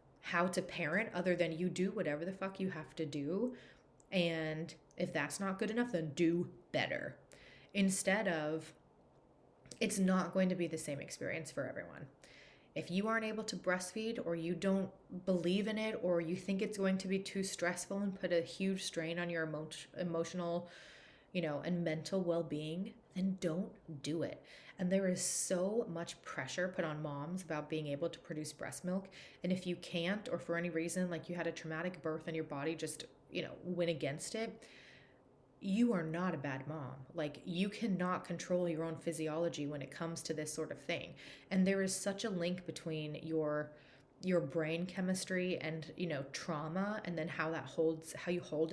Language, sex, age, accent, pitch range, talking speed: English, female, 20-39, American, 160-190 Hz, 190 wpm